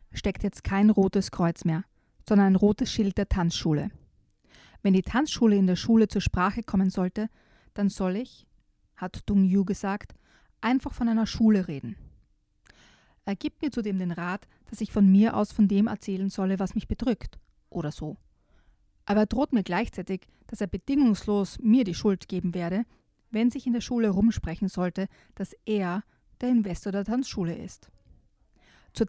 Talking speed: 170 wpm